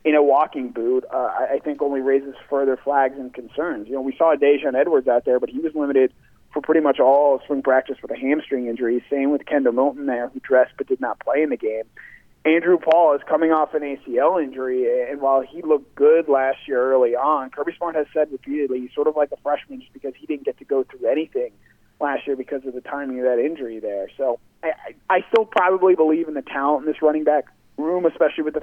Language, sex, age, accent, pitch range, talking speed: English, male, 30-49, American, 135-160 Hz, 240 wpm